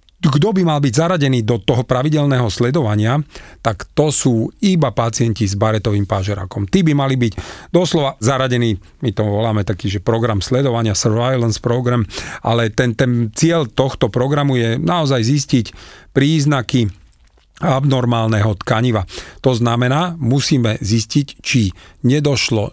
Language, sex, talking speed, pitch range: Slovak, male, 130 wpm, 110-135 Hz